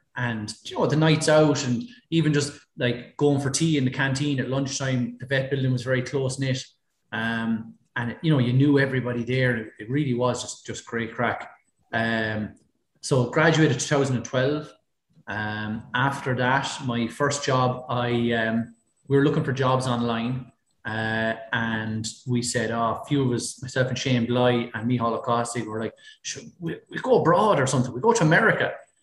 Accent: Irish